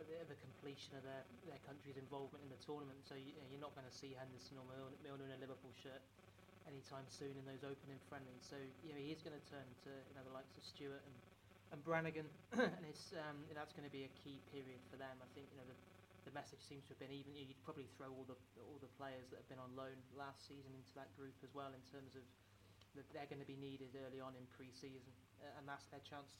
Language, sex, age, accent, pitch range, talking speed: English, male, 30-49, British, 130-145 Hz, 255 wpm